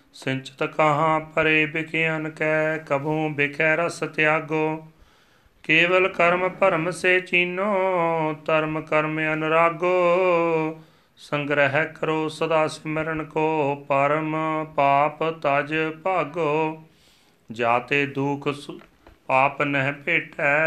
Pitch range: 150-160 Hz